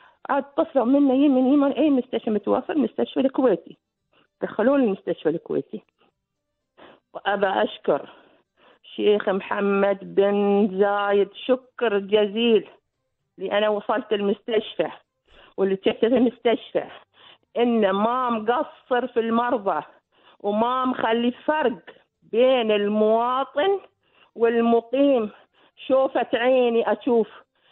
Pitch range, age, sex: 210-270 Hz, 50-69, female